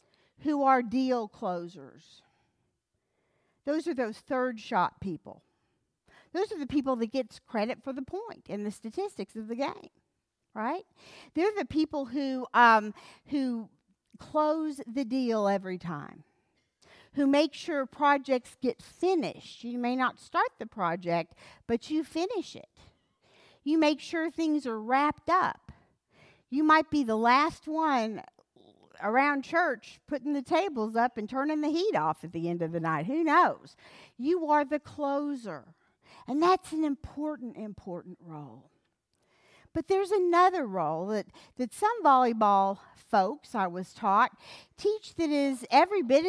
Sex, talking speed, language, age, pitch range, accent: female, 145 wpm, English, 50-69, 215-305 Hz, American